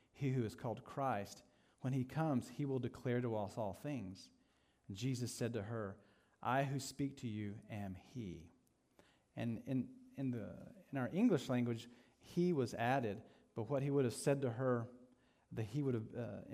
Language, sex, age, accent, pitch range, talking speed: English, male, 40-59, American, 115-140 Hz, 185 wpm